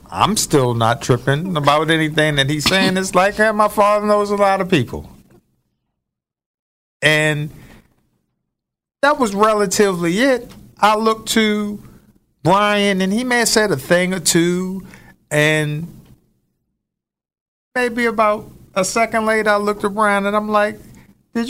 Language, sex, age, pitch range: English, male, 50-69, 190-250 Hz